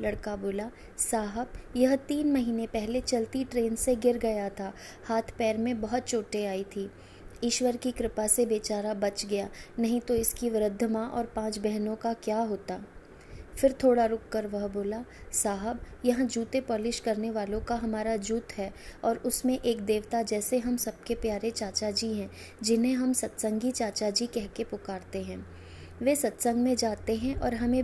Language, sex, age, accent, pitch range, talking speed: Hindi, female, 20-39, native, 215-245 Hz, 170 wpm